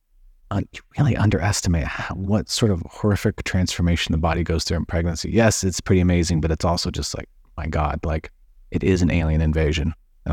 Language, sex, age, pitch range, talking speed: English, male, 30-49, 80-95 Hz, 190 wpm